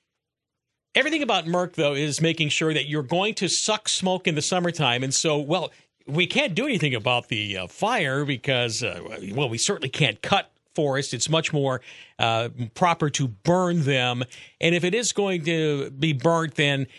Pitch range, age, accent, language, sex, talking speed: 125-165 Hz, 50-69, American, English, male, 185 wpm